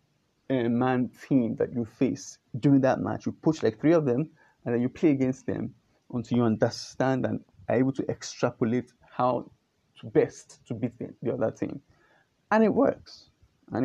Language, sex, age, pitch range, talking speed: English, male, 30-49, 120-155 Hz, 170 wpm